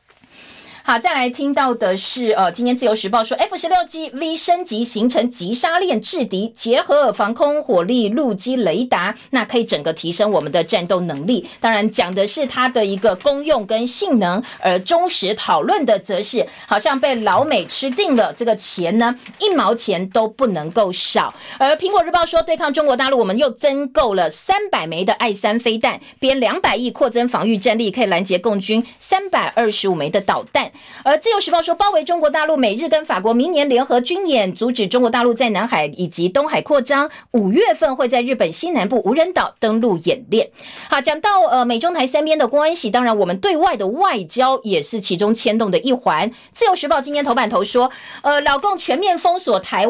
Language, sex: Chinese, female